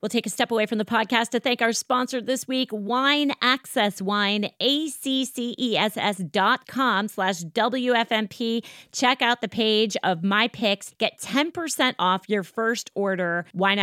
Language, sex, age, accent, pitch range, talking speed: English, female, 30-49, American, 195-250 Hz, 155 wpm